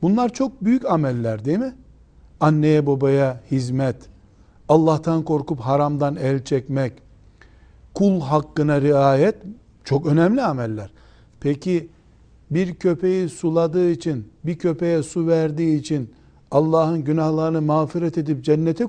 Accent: native